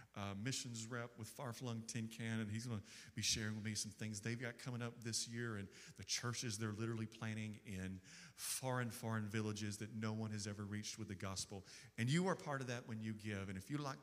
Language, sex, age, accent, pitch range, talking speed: English, male, 40-59, American, 110-140 Hz, 235 wpm